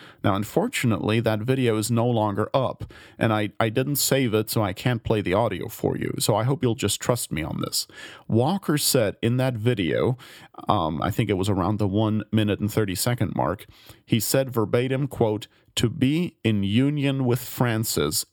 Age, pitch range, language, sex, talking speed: 40-59, 110-130 Hz, English, male, 195 wpm